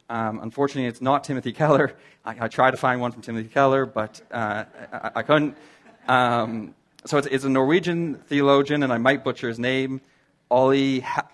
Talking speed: 180 wpm